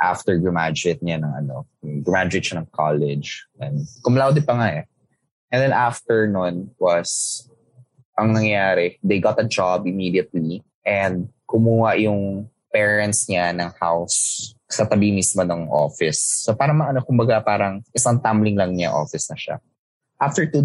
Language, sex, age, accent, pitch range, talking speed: English, male, 20-39, Filipino, 90-120 Hz, 150 wpm